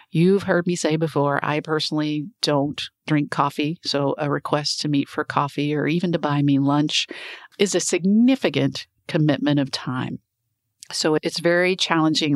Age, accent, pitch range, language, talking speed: 50-69, American, 140-170 Hz, English, 160 wpm